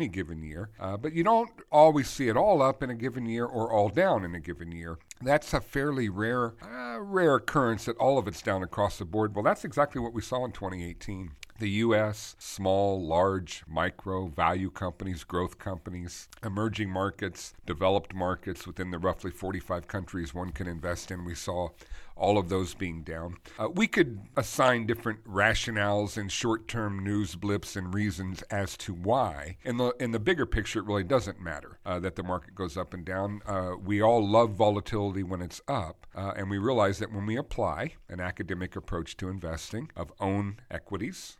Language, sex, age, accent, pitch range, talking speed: English, male, 50-69, American, 90-115 Hz, 190 wpm